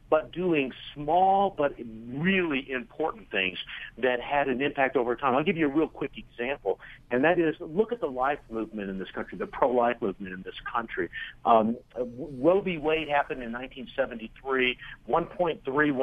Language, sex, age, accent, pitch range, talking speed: English, male, 60-79, American, 125-190 Hz, 170 wpm